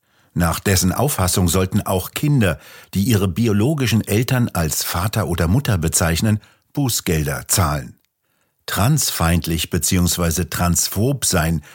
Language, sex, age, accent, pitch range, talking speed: German, male, 50-69, German, 85-110 Hz, 105 wpm